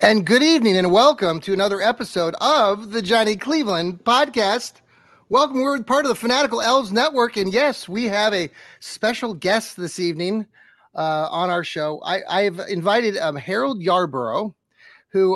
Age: 30-49